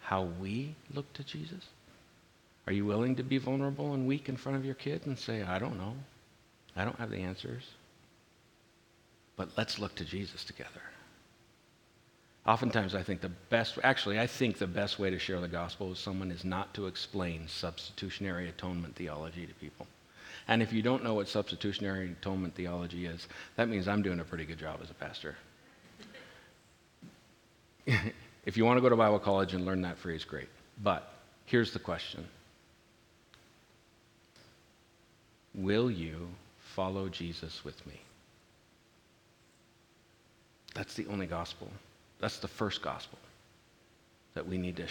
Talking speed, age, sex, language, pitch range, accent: 155 wpm, 50-69, male, English, 90-115 Hz, American